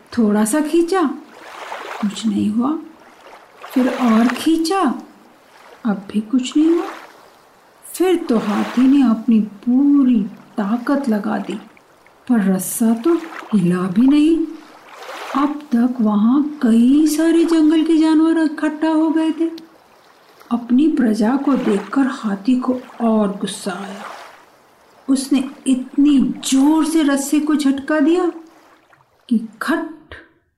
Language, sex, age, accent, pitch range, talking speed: Hindi, female, 50-69, native, 225-295 Hz, 115 wpm